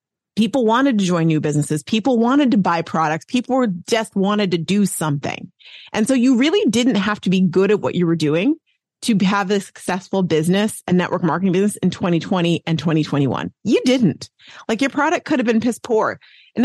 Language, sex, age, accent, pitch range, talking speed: English, female, 30-49, American, 180-235 Hz, 200 wpm